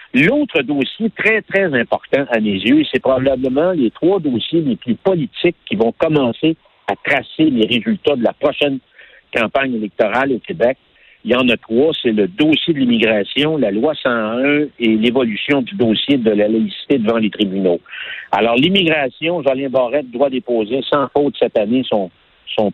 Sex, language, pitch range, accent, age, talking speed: male, French, 120-170 Hz, French, 60-79, 175 wpm